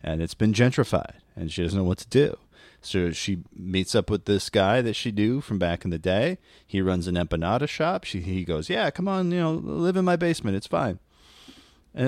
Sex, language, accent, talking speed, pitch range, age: male, English, American, 230 wpm, 95-150 Hz, 30-49